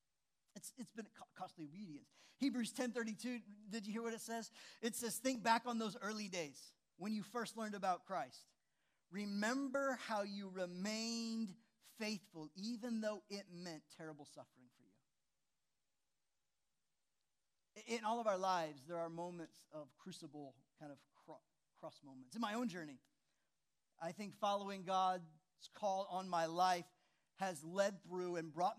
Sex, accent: male, American